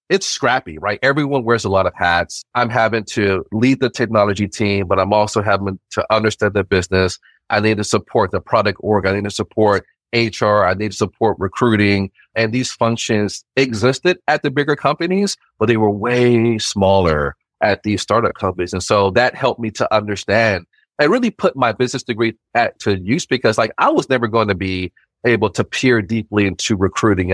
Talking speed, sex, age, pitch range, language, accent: 195 wpm, male, 30-49, 95-115 Hz, English, American